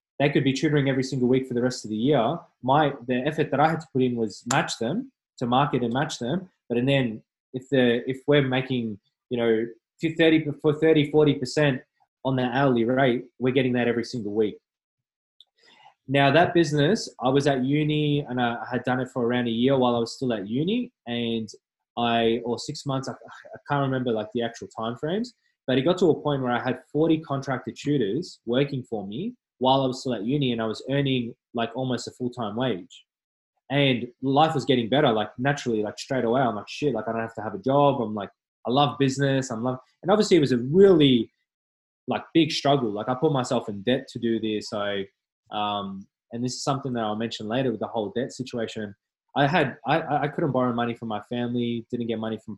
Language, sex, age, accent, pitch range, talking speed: English, male, 20-39, Australian, 115-140 Hz, 220 wpm